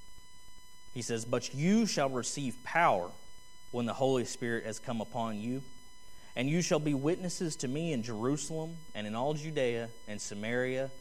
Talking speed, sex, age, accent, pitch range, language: 165 wpm, male, 30-49, American, 110-155 Hz, English